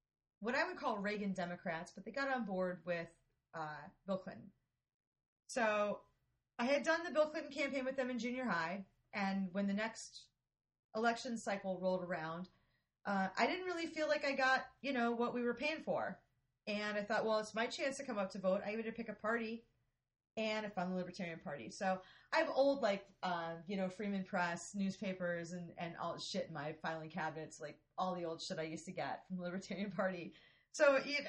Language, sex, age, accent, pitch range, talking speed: English, female, 30-49, American, 175-235 Hz, 210 wpm